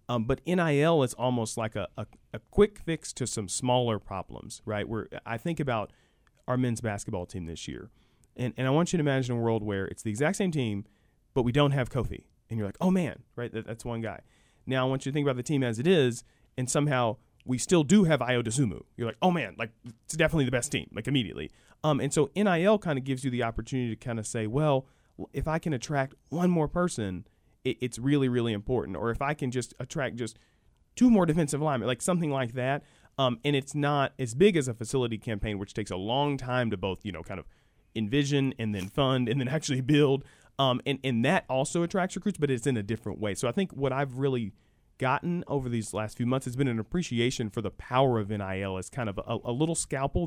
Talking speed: 235 wpm